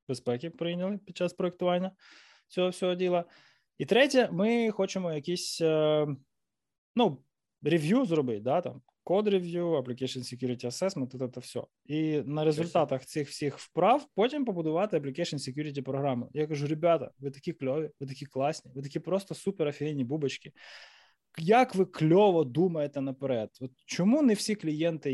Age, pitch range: 20-39, 135-195 Hz